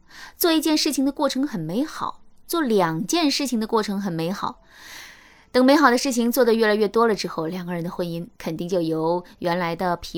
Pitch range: 185-265 Hz